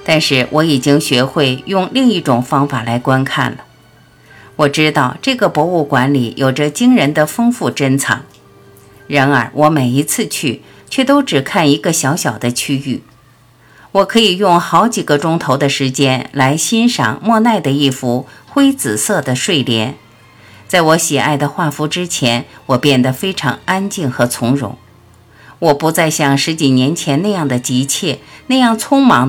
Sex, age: female, 50-69